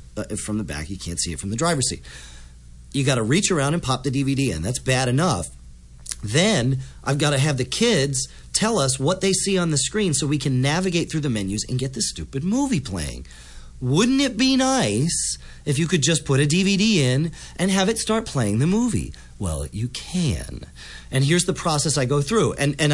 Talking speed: 220 wpm